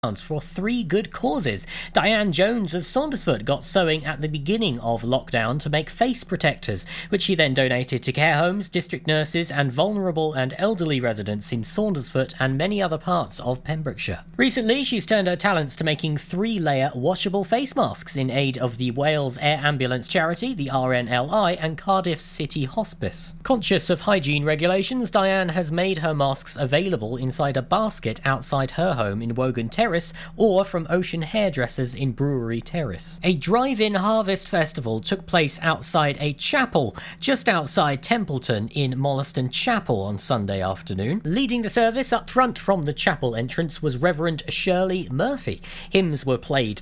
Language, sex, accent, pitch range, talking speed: English, male, British, 130-195 Hz, 160 wpm